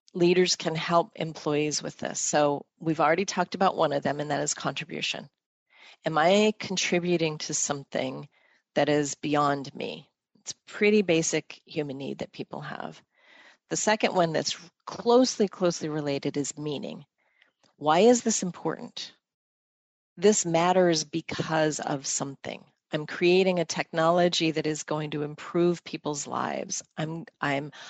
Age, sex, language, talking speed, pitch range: 40-59, female, English, 140 wpm, 150-180 Hz